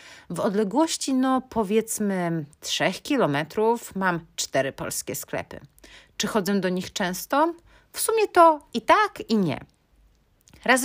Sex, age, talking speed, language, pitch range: female, 30-49, 125 wpm, Polish, 160-235 Hz